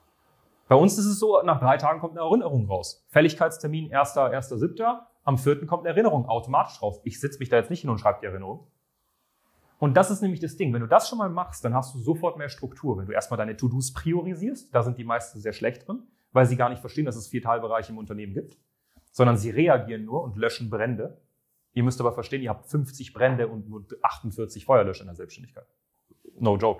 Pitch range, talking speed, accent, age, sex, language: 120-170 Hz, 220 wpm, German, 30-49, male, German